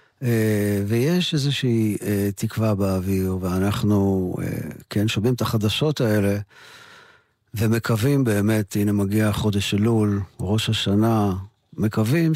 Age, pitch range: 50-69, 100-125 Hz